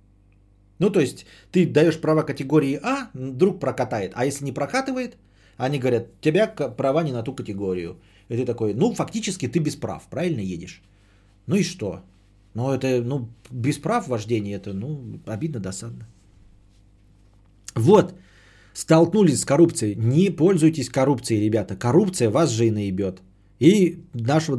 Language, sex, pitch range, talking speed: Bulgarian, male, 105-160 Hz, 150 wpm